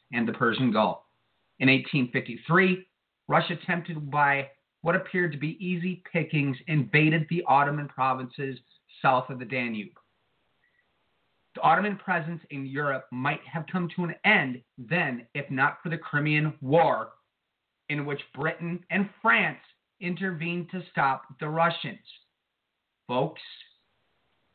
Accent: American